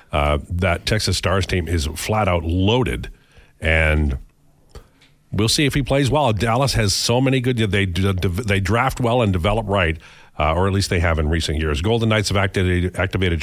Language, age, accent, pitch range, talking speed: English, 50-69, American, 90-115 Hz, 190 wpm